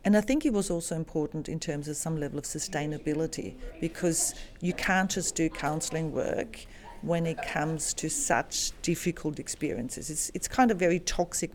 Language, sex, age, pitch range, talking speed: English, female, 40-59, 160-200 Hz, 175 wpm